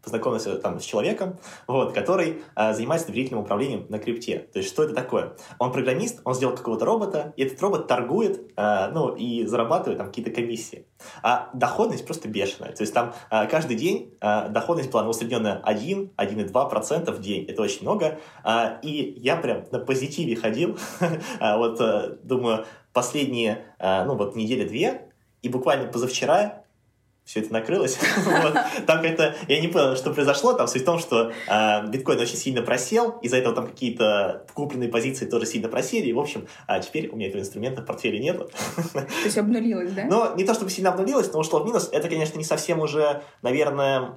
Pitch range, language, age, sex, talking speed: 115-160 Hz, Russian, 20-39, male, 165 wpm